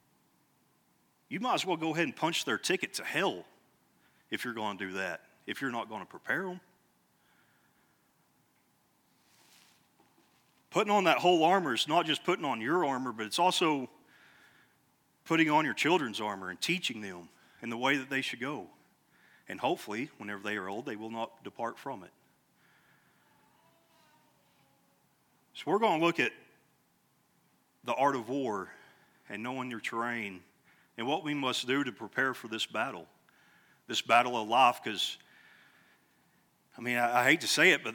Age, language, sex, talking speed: 40-59, English, male, 165 wpm